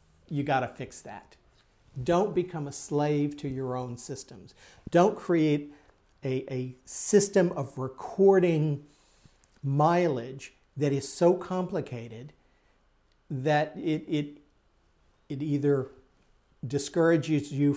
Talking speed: 105 wpm